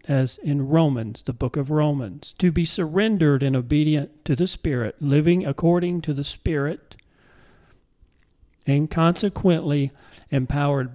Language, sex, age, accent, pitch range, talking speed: English, male, 40-59, American, 135-165 Hz, 125 wpm